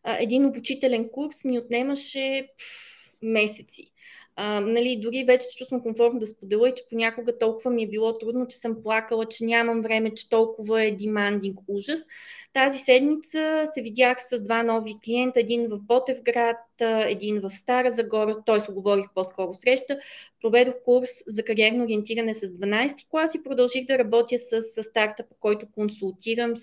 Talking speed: 160 wpm